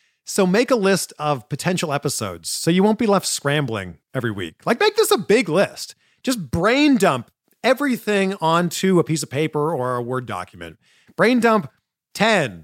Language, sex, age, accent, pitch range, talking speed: English, male, 40-59, American, 140-225 Hz, 175 wpm